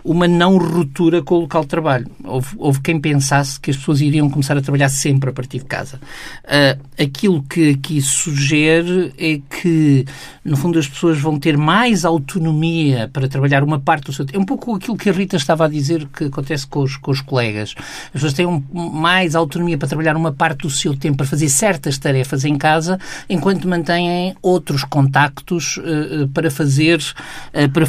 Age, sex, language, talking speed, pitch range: 50-69, male, Portuguese, 185 wpm, 135-165 Hz